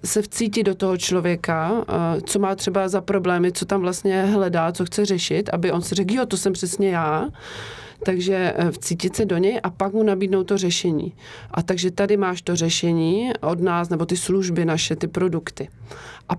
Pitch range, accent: 170-195 Hz, native